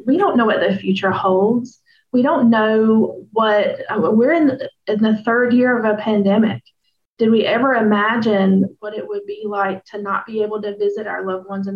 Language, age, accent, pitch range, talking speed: English, 30-49, American, 200-245 Hz, 200 wpm